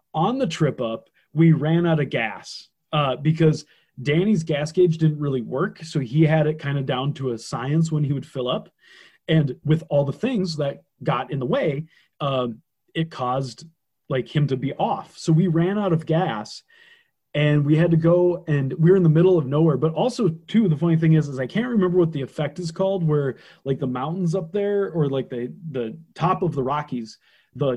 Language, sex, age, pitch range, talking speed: English, male, 30-49, 135-175 Hz, 215 wpm